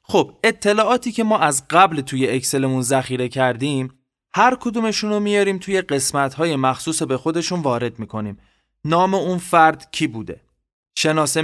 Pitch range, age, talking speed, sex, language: 130-160 Hz, 20-39, 135 wpm, male, Persian